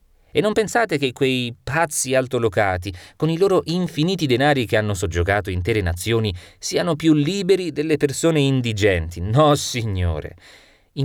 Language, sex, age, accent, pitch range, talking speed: Italian, male, 30-49, native, 90-140 Hz, 140 wpm